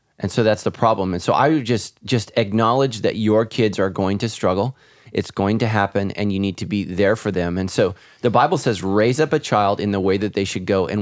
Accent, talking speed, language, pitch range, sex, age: American, 260 wpm, English, 100-120 Hz, male, 30-49